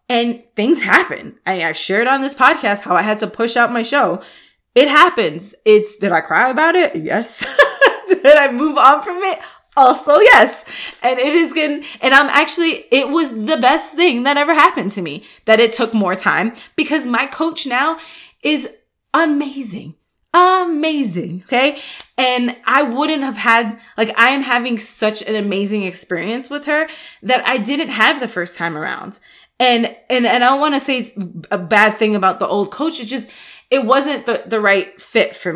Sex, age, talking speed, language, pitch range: female, 20-39, 185 wpm, English, 205-280 Hz